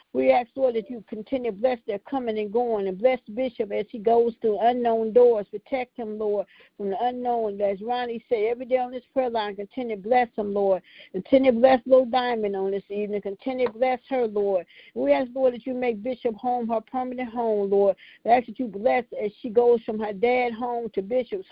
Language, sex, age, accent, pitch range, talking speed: English, female, 50-69, American, 205-250 Hz, 225 wpm